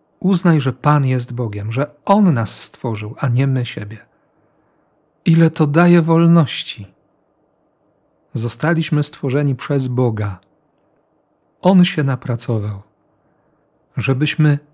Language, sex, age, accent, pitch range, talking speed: Polish, male, 40-59, native, 125-160 Hz, 100 wpm